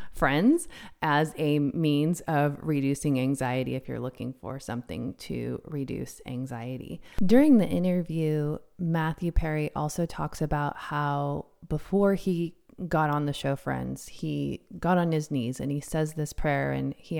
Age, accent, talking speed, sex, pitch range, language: 30-49, American, 150 wpm, female, 140-160 Hz, English